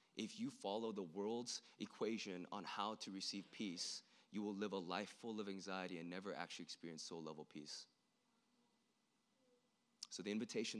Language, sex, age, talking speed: English, male, 20-39, 155 wpm